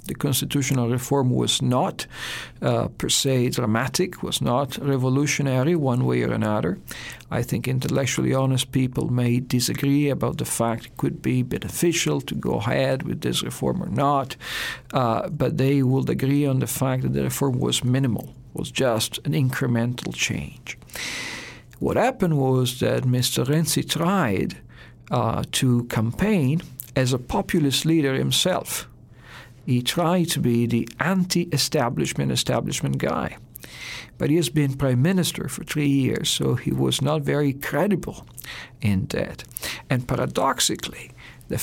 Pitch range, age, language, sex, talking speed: 120-145 Hz, 50-69, English, male, 145 wpm